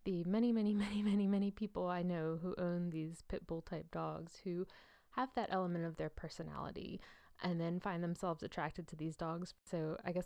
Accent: American